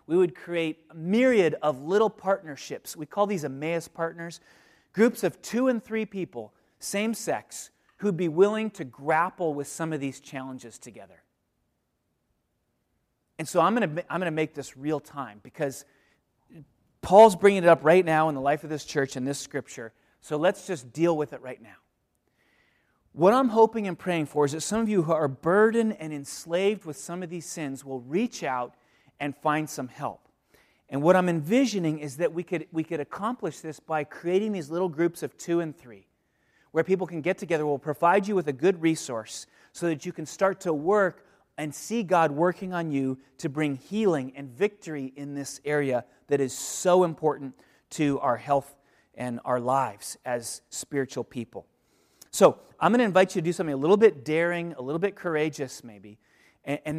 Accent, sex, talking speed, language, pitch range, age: American, male, 190 wpm, English, 140-185 Hz, 30-49